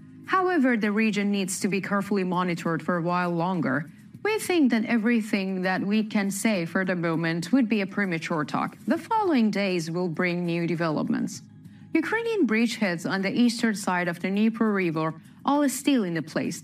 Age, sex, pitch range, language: 30-49, female, 180-245 Hz, English